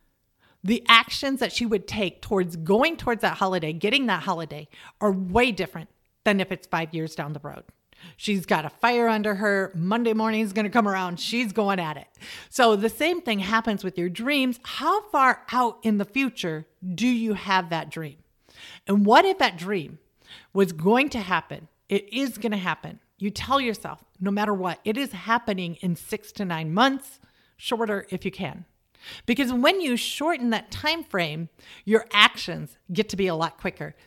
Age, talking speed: 40-59, 190 wpm